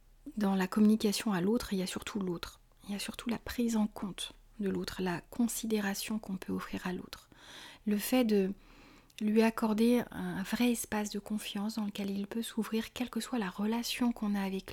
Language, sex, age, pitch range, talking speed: French, female, 30-49, 185-220 Hz, 205 wpm